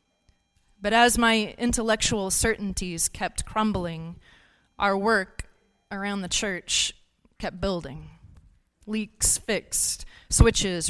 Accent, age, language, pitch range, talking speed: American, 30-49, English, 175-220 Hz, 95 wpm